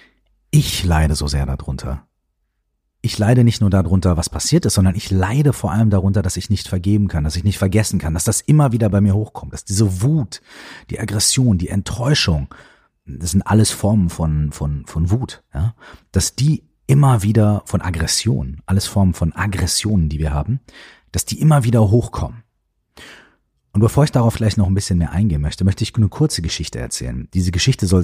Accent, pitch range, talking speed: German, 85-110 Hz, 195 wpm